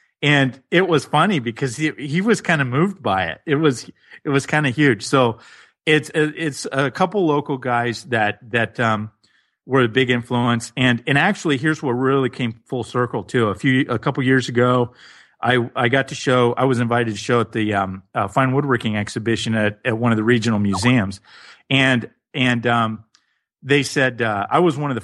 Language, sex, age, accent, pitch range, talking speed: English, male, 40-59, American, 110-135 Hz, 210 wpm